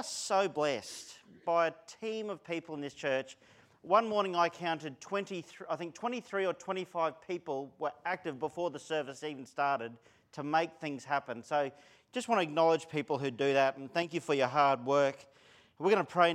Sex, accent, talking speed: male, Australian, 190 wpm